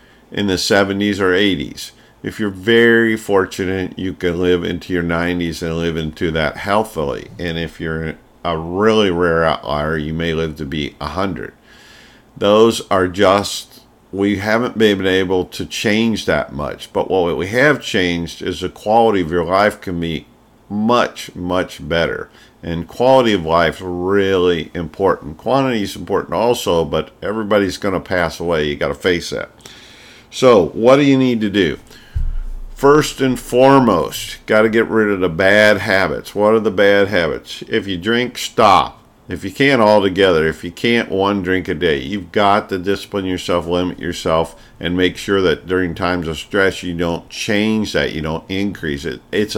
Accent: American